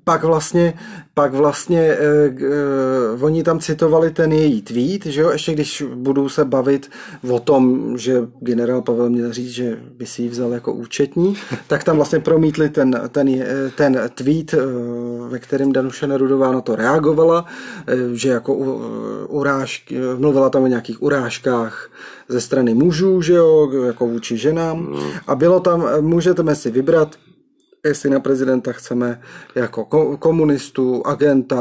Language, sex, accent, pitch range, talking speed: Czech, male, native, 130-170 Hz, 135 wpm